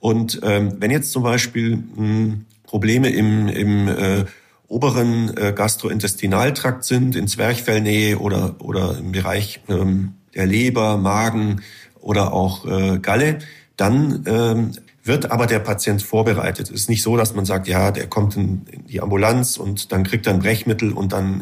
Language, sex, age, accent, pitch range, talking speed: German, male, 40-59, German, 100-125 Hz, 160 wpm